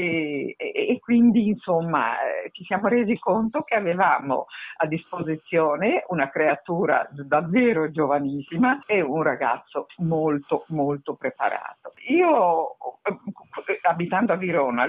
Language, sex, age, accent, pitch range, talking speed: Italian, female, 50-69, native, 140-235 Hz, 110 wpm